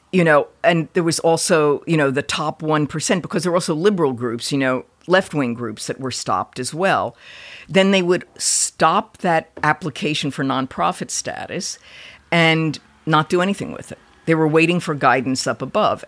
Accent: American